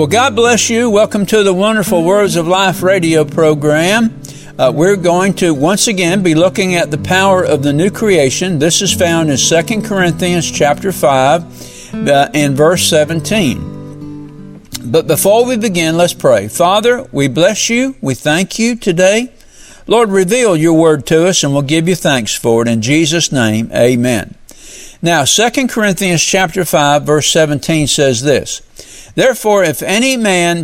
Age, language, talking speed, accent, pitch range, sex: 60-79, English, 165 wpm, American, 140-190 Hz, male